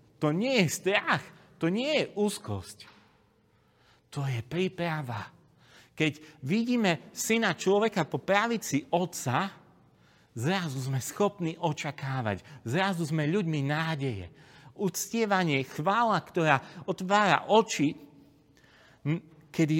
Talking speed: 95 wpm